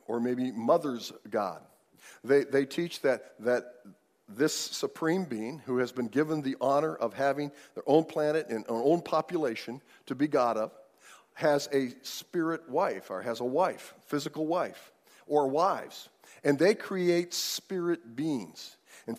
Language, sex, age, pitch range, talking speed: English, male, 50-69, 125-165 Hz, 155 wpm